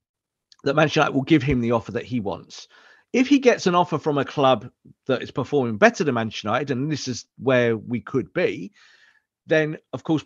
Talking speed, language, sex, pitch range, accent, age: 210 wpm, English, male, 115-150 Hz, British, 40-59